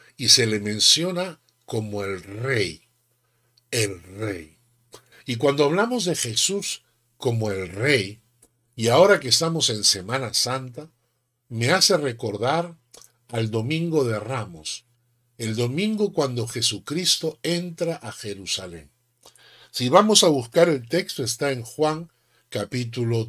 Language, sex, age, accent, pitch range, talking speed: Spanish, male, 60-79, American, 115-155 Hz, 125 wpm